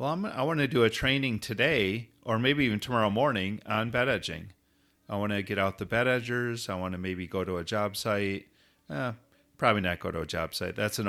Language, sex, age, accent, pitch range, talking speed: English, male, 40-59, American, 95-115 Hz, 235 wpm